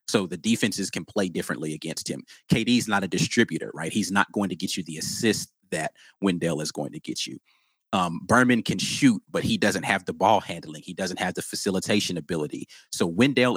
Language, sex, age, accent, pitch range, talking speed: English, male, 30-49, American, 95-115 Hz, 210 wpm